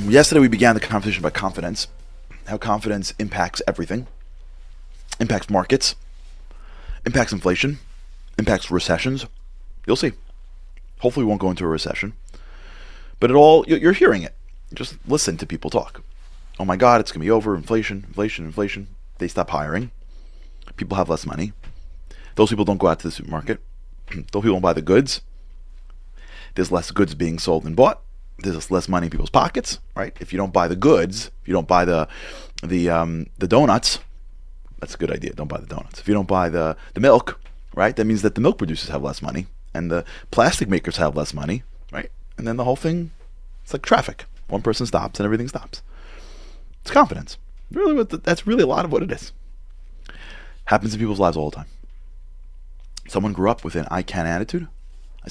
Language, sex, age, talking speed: English, male, 30-49, 190 wpm